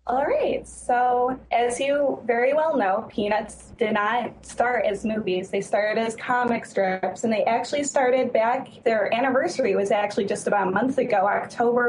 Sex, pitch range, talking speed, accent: female, 210-255 Hz, 170 wpm, American